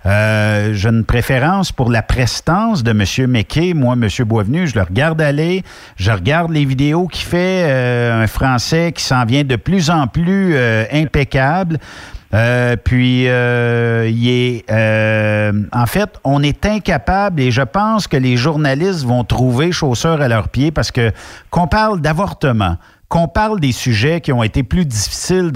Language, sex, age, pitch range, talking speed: French, male, 50-69, 115-175 Hz, 170 wpm